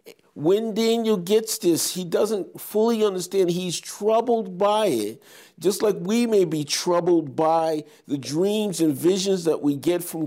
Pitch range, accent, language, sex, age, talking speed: 160-205 Hz, American, English, male, 50-69, 160 wpm